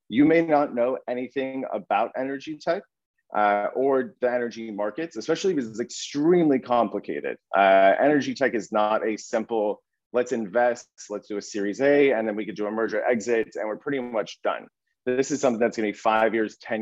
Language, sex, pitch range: English, male, 105-135 Hz